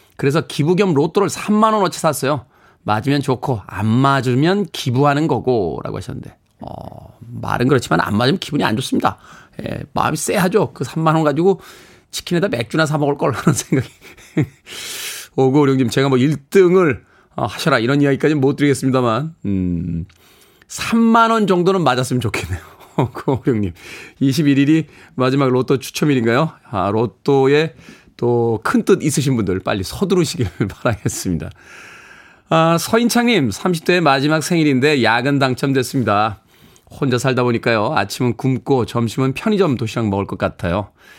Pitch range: 110-155 Hz